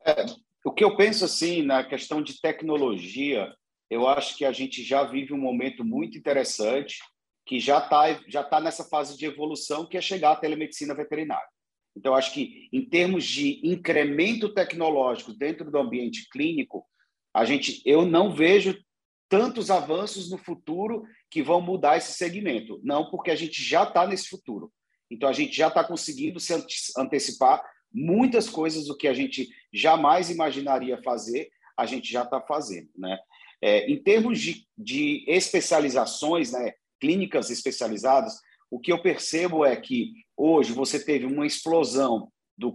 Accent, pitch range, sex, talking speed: Brazilian, 145-210 Hz, male, 160 wpm